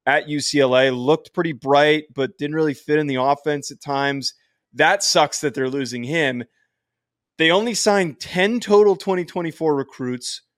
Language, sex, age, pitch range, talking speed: English, male, 20-39, 135-180 Hz, 165 wpm